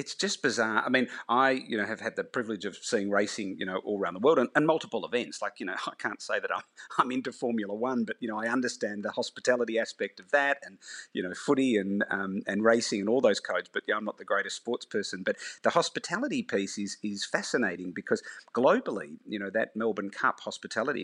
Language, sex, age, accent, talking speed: English, male, 40-59, Australian, 235 wpm